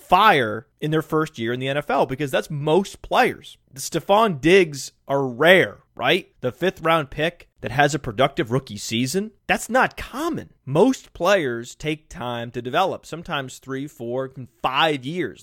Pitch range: 120-155 Hz